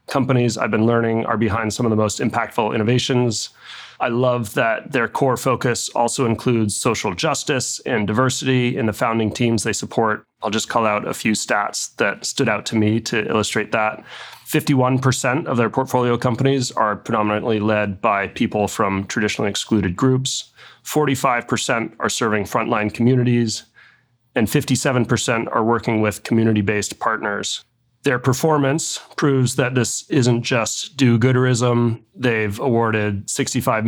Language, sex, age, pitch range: English, male, 30-49, 115-135 Hz